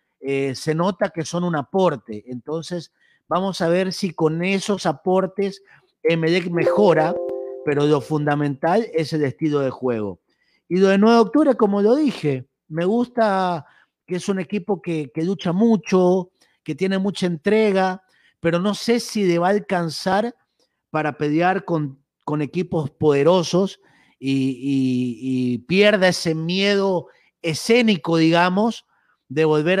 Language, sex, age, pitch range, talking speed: Spanish, male, 40-59, 145-190 Hz, 145 wpm